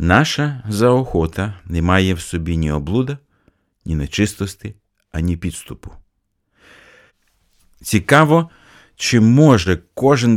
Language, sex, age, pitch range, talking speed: Ukrainian, male, 50-69, 90-115 Hz, 95 wpm